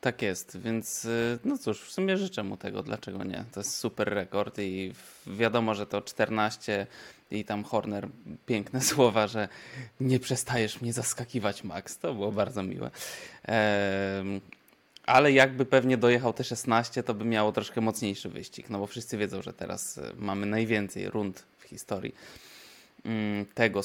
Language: Polish